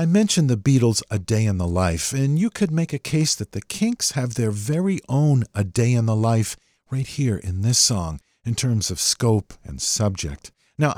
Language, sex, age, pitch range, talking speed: English, male, 50-69, 95-145 Hz, 215 wpm